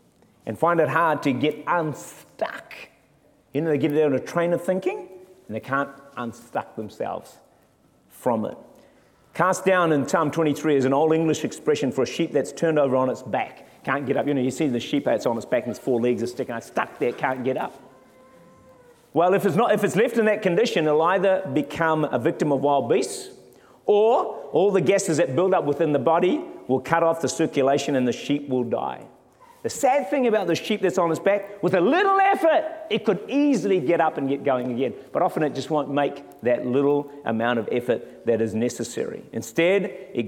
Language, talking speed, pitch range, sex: English, 215 wpm, 135-185 Hz, male